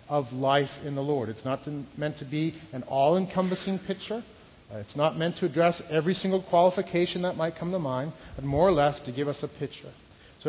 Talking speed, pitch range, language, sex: 205 wpm, 125-160 Hz, English, male